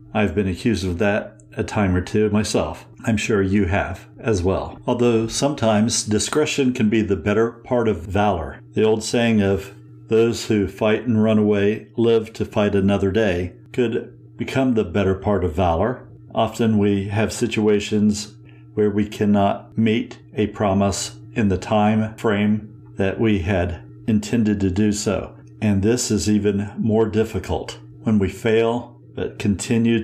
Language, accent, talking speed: English, American, 160 wpm